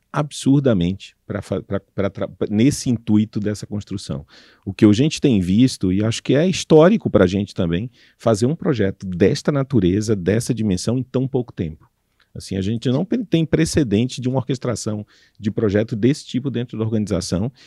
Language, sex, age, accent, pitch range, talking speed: Portuguese, male, 40-59, Brazilian, 95-130 Hz, 160 wpm